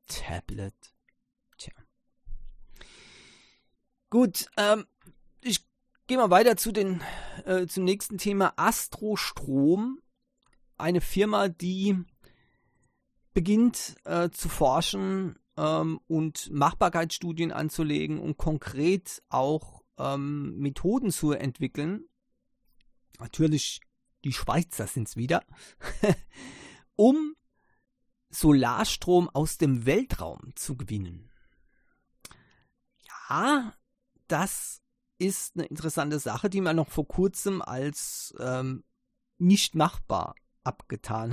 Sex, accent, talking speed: male, German, 90 wpm